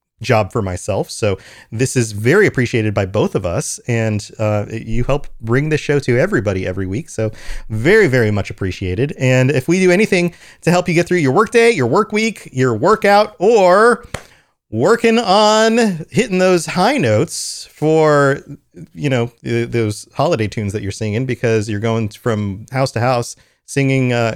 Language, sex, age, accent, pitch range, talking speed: English, male, 30-49, American, 110-175 Hz, 170 wpm